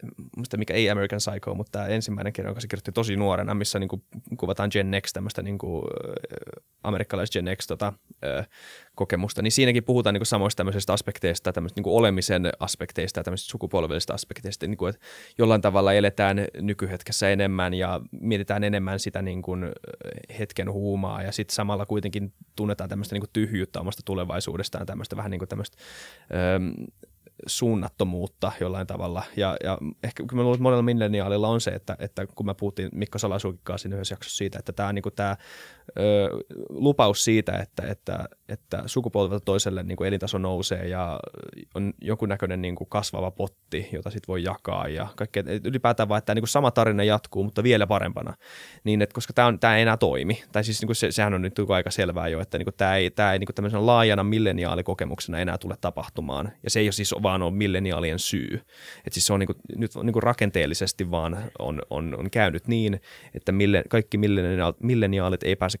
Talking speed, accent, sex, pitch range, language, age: 175 wpm, native, male, 95-105 Hz, Finnish, 20-39